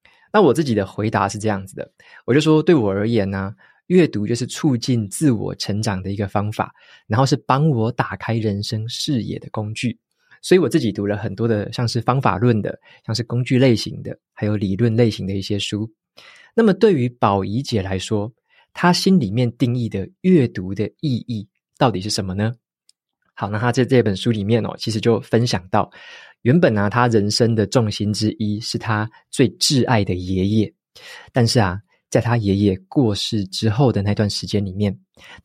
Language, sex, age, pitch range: Chinese, male, 20-39, 100-125 Hz